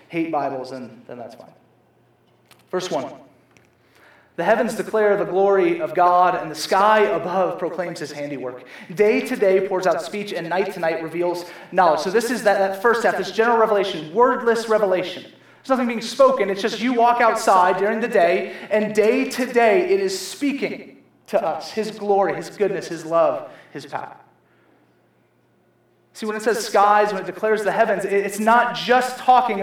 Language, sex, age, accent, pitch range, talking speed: English, male, 30-49, American, 185-235 Hz, 180 wpm